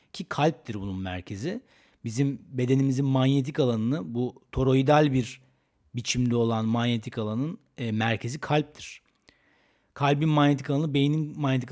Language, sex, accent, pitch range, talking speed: Turkish, male, native, 115-150 Hz, 120 wpm